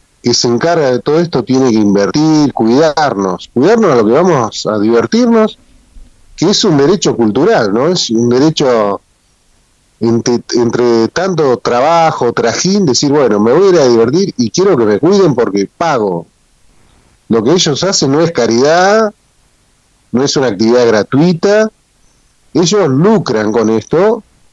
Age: 40-59